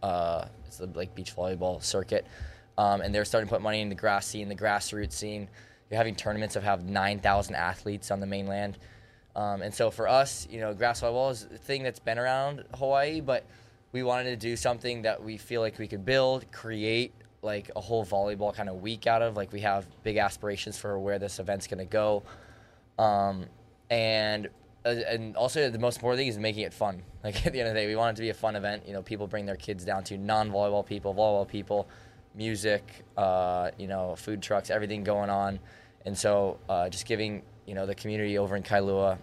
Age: 20-39